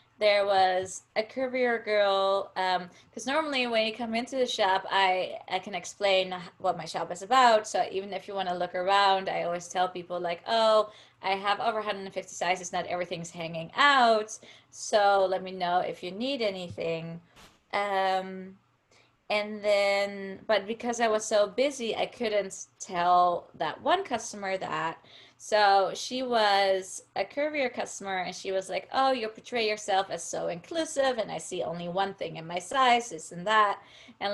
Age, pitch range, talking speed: 20-39, 185-215 Hz, 175 wpm